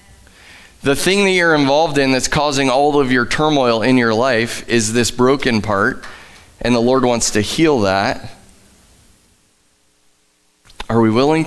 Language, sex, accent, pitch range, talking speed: English, male, American, 100-140 Hz, 150 wpm